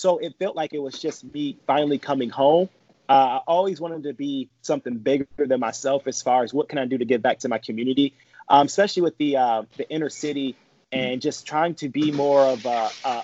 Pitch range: 125-150 Hz